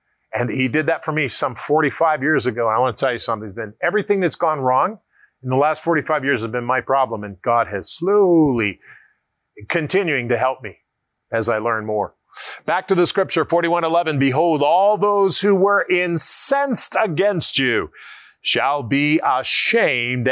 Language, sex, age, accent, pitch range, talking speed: English, male, 40-59, American, 125-180 Hz, 175 wpm